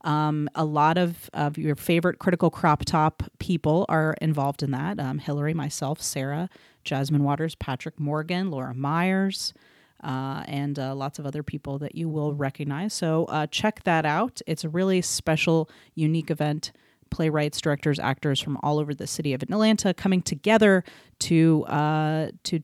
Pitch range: 150-190 Hz